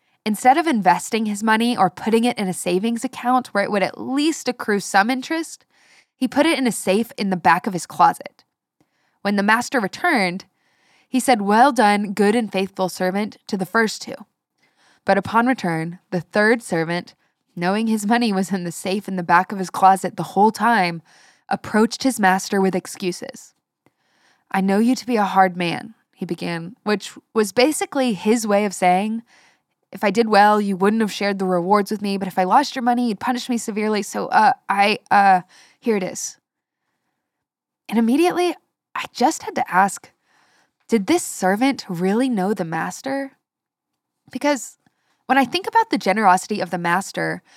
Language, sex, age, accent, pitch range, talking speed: English, female, 10-29, American, 190-250 Hz, 185 wpm